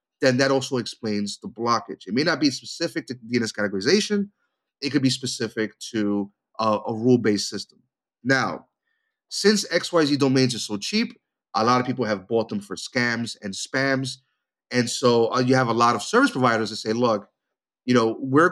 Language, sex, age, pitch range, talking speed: English, male, 30-49, 120-150 Hz, 185 wpm